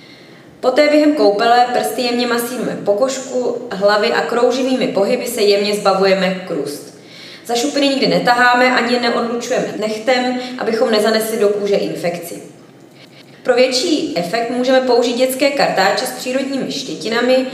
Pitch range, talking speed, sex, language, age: 195-255 Hz, 125 wpm, female, Czech, 20-39